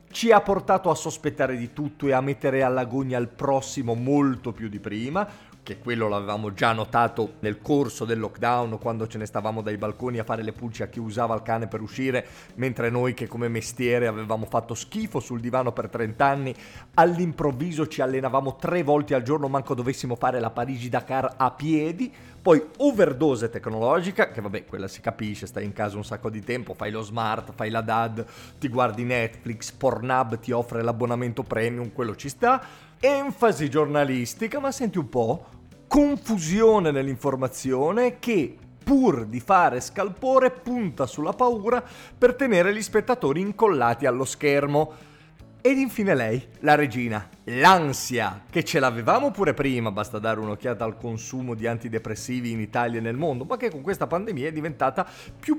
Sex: male